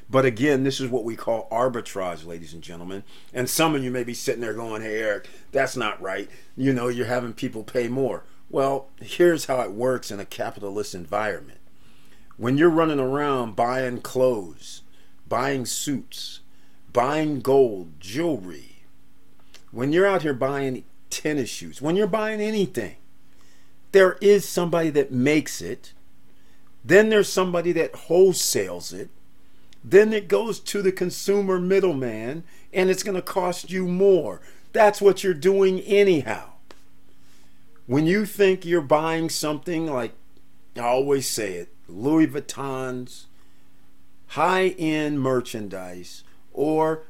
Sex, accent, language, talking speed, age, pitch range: male, American, English, 140 wpm, 40-59, 110-170 Hz